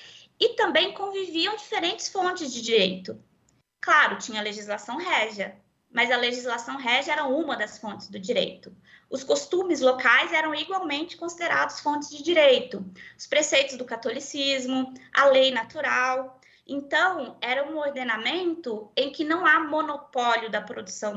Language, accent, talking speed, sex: Portuguese, Brazilian, 135 wpm, female